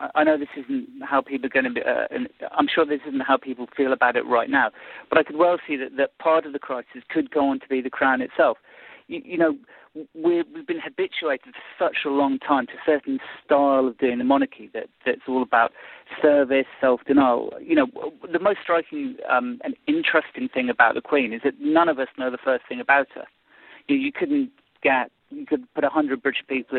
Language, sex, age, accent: English, male, 40-59, British